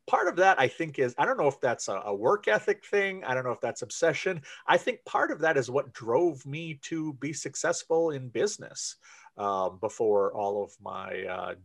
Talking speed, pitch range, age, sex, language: 210 wpm, 130-185 Hz, 40-59, male, English